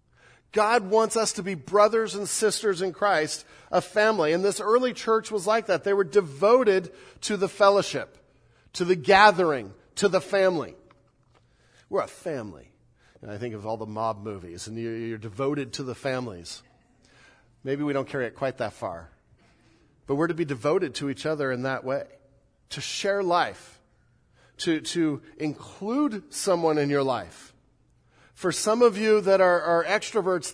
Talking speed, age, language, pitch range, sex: 165 wpm, 40-59, English, 130-195 Hz, male